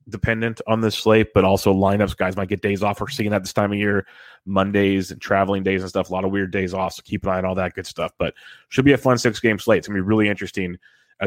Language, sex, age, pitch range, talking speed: English, male, 30-49, 95-105 Hz, 290 wpm